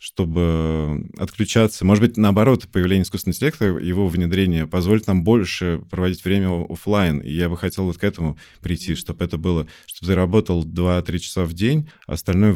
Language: Russian